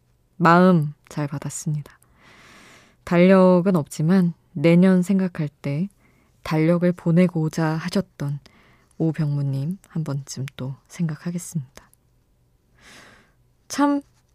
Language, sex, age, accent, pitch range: Korean, female, 20-39, native, 145-180 Hz